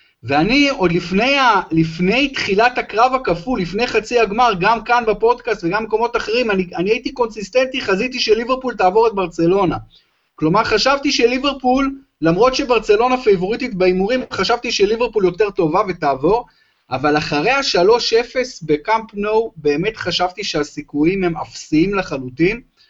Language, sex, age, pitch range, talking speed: Hebrew, male, 30-49, 165-240 Hz, 125 wpm